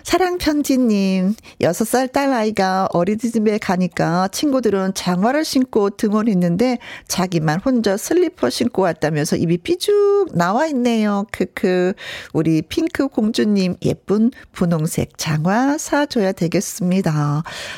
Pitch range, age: 175-255 Hz, 40-59